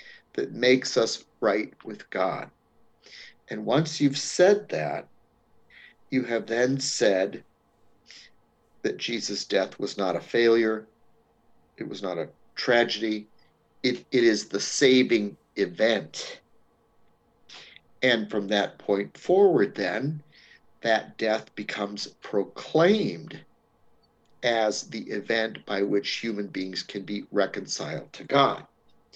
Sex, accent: male, American